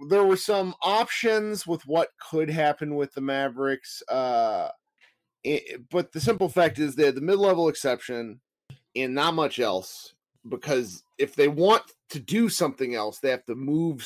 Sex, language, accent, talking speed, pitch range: male, English, American, 160 wpm, 125-190 Hz